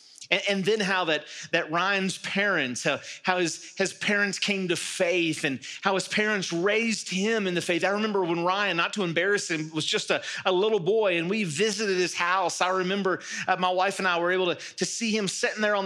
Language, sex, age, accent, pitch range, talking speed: English, male, 30-49, American, 170-210 Hz, 225 wpm